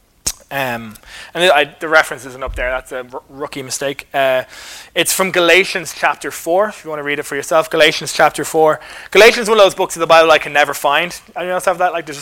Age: 20-39